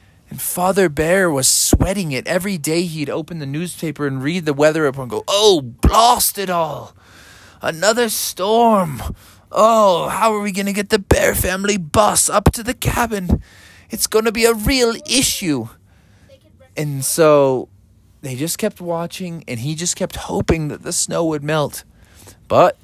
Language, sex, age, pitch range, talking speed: English, male, 20-39, 115-185 Hz, 170 wpm